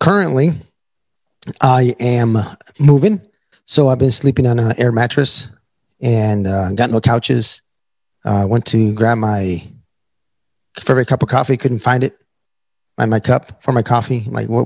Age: 30-49